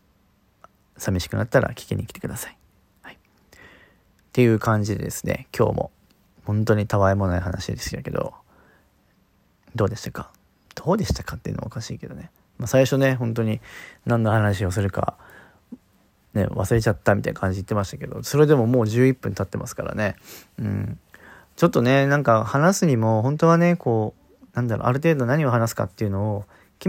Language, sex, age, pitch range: Japanese, male, 40-59, 100-130 Hz